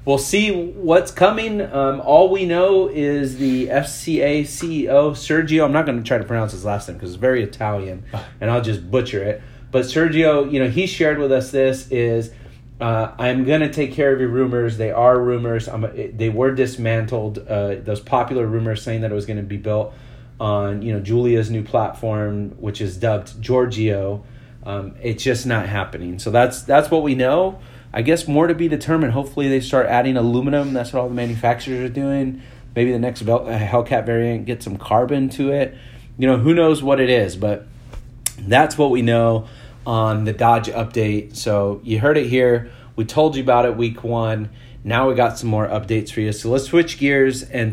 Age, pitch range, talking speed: 30-49, 110-135 Hz, 200 wpm